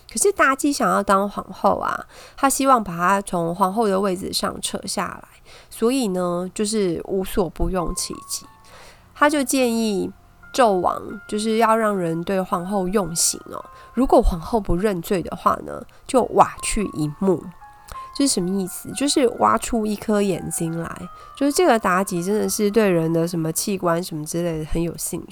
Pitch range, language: 180-235 Hz, Chinese